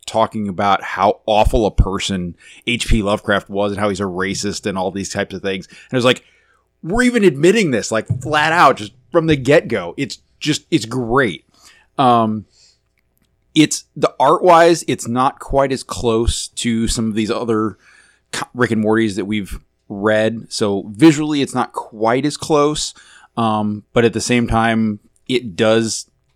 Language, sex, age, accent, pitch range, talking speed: English, male, 20-39, American, 105-130 Hz, 170 wpm